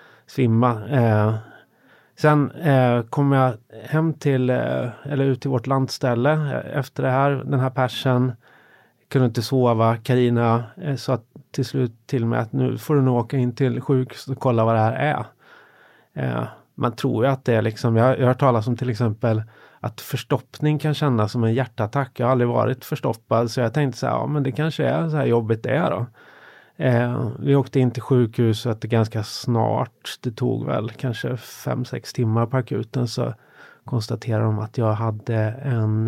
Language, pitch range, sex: English, 115-135 Hz, male